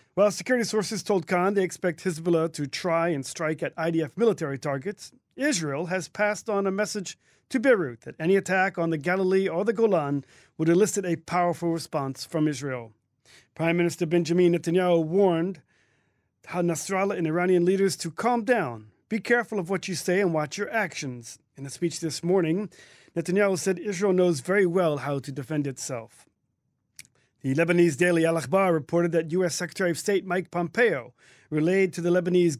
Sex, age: male, 40-59